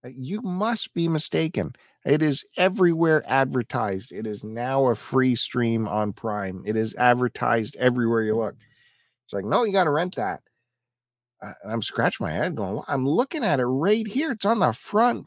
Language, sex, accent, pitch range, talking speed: English, male, American, 105-135 Hz, 185 wpm